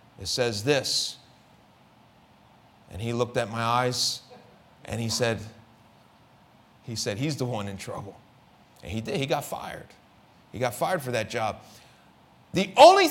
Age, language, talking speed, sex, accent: 30-49, English, 150 wpm, male, American